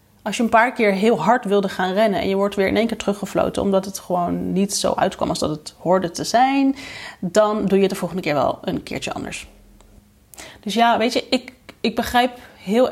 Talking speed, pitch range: 230 wpm, 195-235 Hz